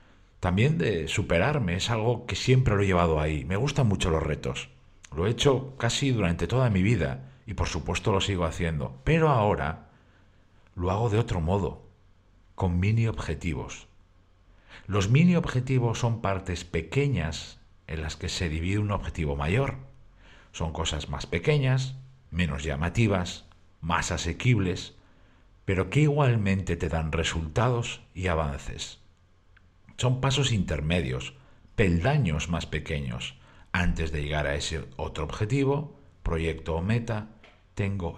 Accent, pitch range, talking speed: Spanish, 85-120 Hz, 135 wpm